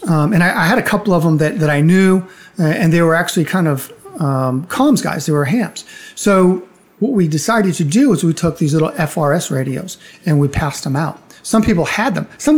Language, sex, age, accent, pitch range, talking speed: English, male, 40-59, American, 155-190 Hz, 235 wpm